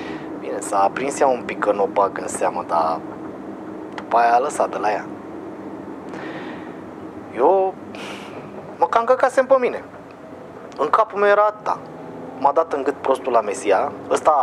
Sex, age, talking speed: male, 30-49, 160 wpm